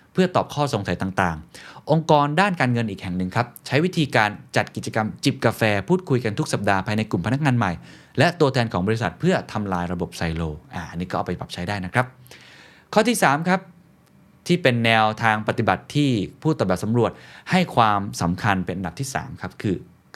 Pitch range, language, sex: 95-135 Hz, Thai, male